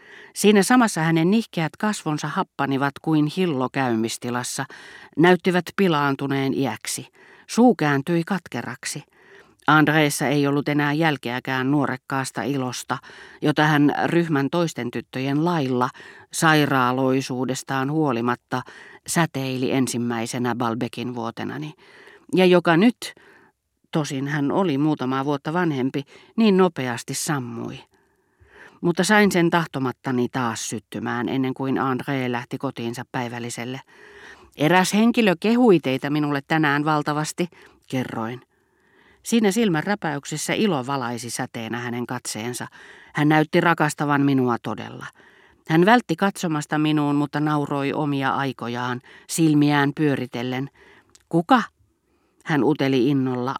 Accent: native